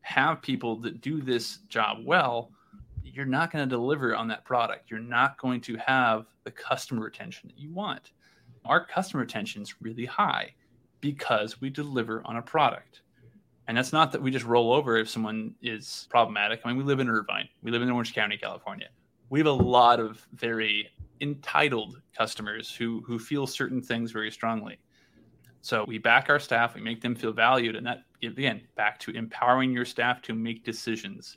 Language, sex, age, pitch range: English, male, 20-39, 115-130 Hz